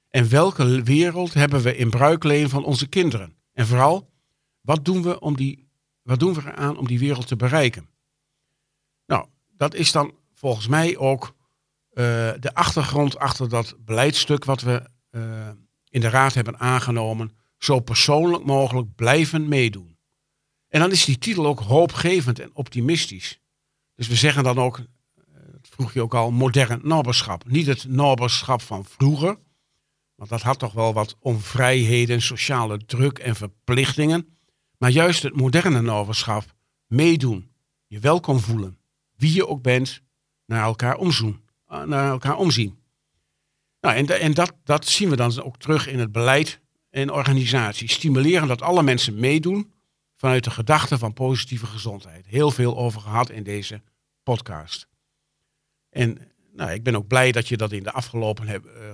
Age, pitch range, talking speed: 50-69, 115-145 Hz, 155 wpm